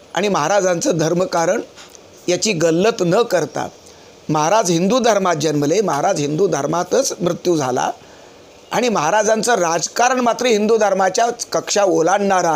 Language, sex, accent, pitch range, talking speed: Marathi, male, native, 185-235 Hz, 115 wpm